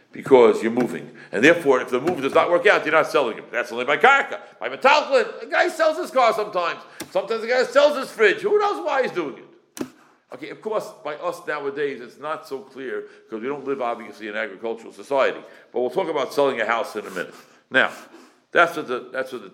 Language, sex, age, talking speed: English, male, 60-79, 235 wpm